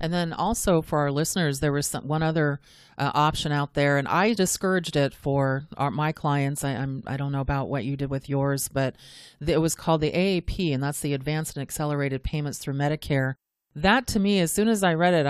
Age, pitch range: 30-49, 140-165 Hz